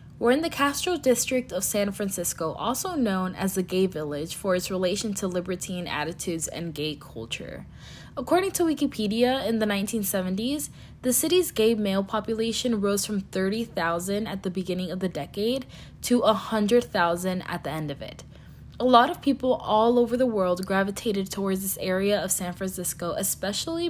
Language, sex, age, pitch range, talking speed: English, female, 20-39, 180-240 Hz, 165 wpm